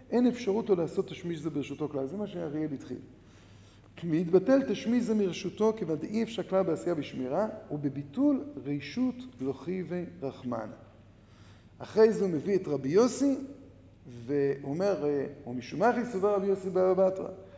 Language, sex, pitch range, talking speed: Hebrew, male, 140-225 Hz, 145 wpm